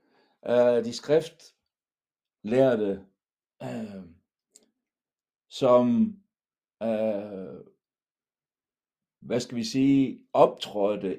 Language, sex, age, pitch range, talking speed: Danish, male, 60-79, 100-135 Hz, 60 wpm